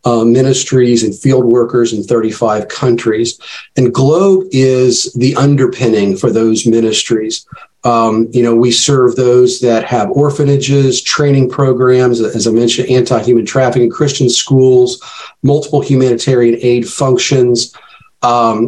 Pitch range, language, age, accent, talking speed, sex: 115-135 Hz, English, 40-59, American, 125 wpm, male